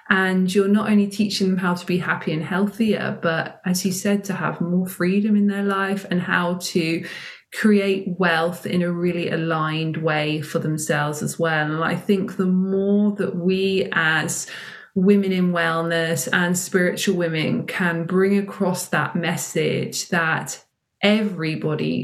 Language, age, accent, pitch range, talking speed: English, 20-39, British, 170-200 Hz, 160 wpm